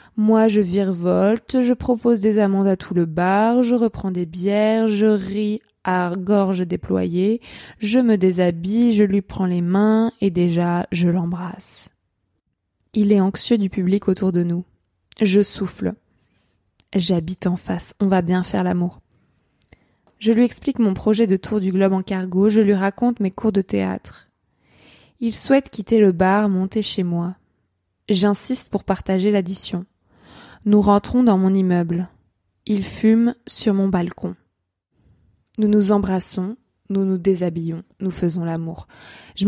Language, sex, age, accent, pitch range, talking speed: French, female, 20-39, French, 180-215 Hz, 150 wpm